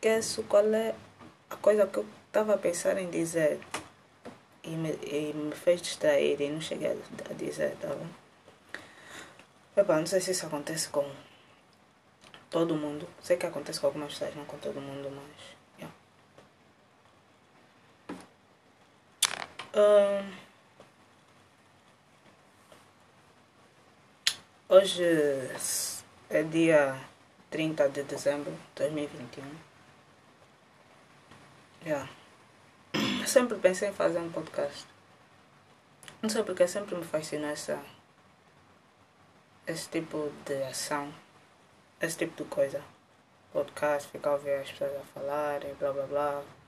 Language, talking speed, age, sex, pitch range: Portuguese, 115 wpm, 20-39, female, 145-185 Hz